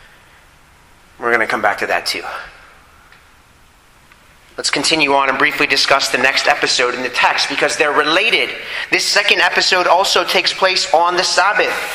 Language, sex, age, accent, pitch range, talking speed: English, male, 30-49, American, 140-180 Hz, 160 wpm